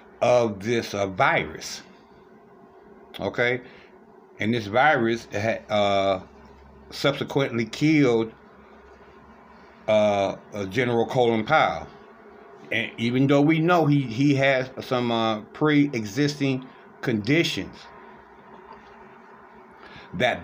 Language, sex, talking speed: English, male, 90 wpm